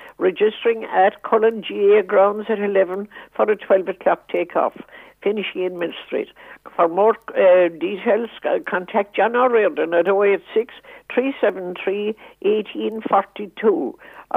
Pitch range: 195-250 Hz